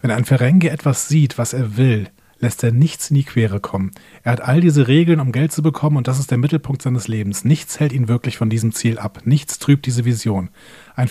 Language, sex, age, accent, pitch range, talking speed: German, male, 40-59, German, 115-145 Hz, 240 wpm